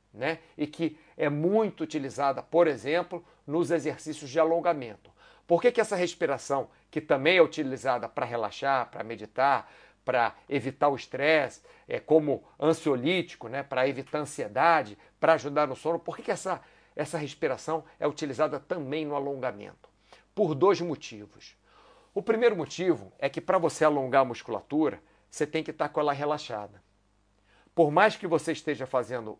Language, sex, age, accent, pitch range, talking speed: Portuguese, male, 50-69, Brazilian, 125-160 Hz, 155 wpm